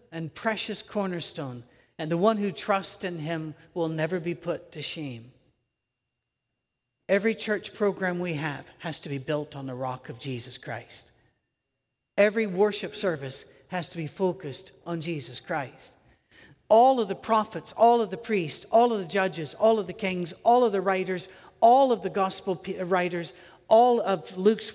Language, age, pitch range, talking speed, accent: English, 50-69, 150-210 Hz, 165 wpm, American